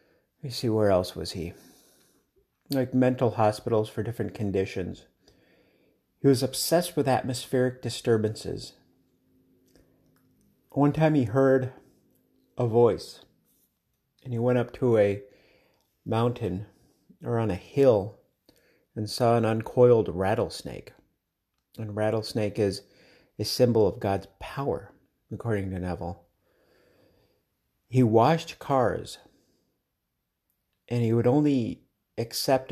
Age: 50-69